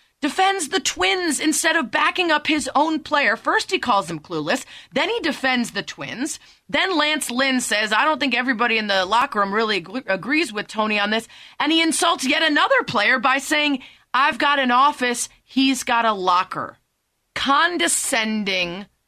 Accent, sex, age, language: American, female, 30-49, English